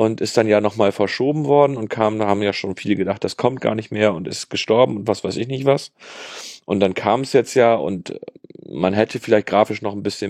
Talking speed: 250 wpm